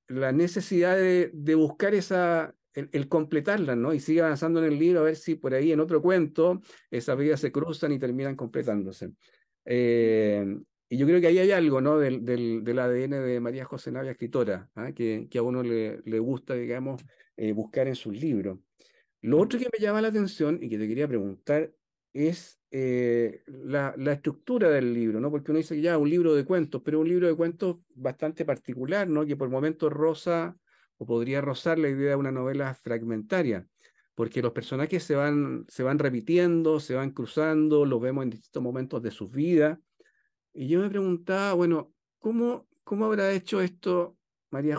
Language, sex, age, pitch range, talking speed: Spanish, male, 50-69, 130-170 Hz, 195 wpm